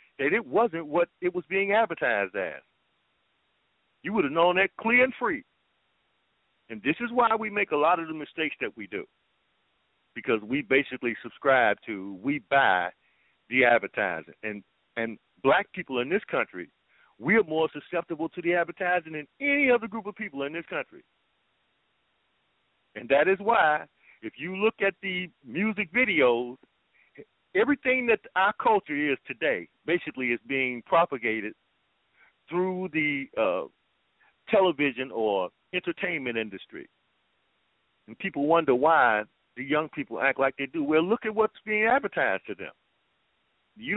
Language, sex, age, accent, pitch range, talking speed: English, male, 50-69, American, 140-210 Hz, 150 wpm